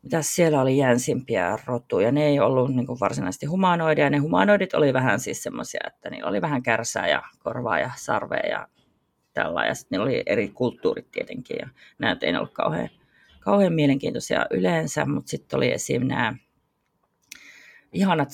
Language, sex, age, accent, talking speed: Finnish, female, 30-49, native, 155 wpm